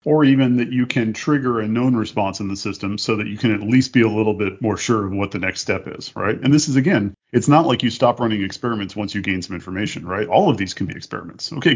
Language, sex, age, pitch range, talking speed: English, male, 40-59, 100-120 Hz, 280 wpm